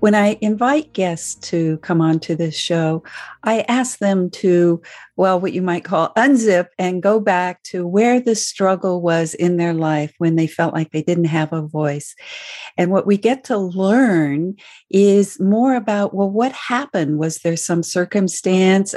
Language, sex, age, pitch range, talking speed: English, female, 50-69, 165-205 Hz, 175 wpm